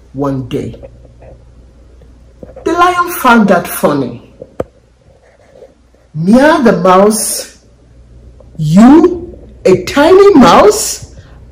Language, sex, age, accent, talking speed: English, male, 50-69, Nigerian, 75 wpm